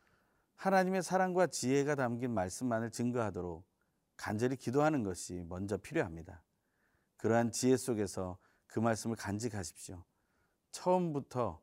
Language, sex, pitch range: Korean, male, 100-140 Hz